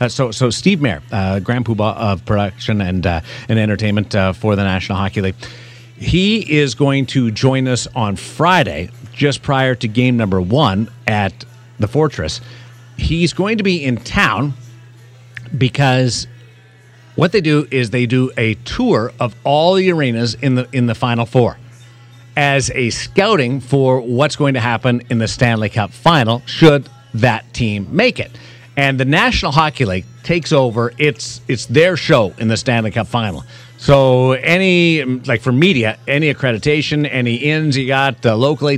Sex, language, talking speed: male, English, 165 wpm